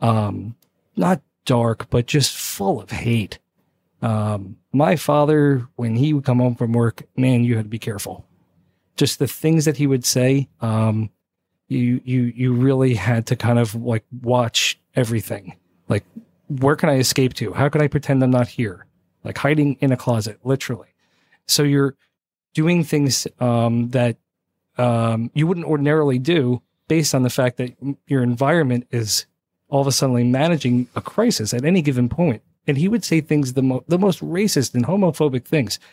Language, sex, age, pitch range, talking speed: English, male, 40-59, 115-145 Hz, 175 wpm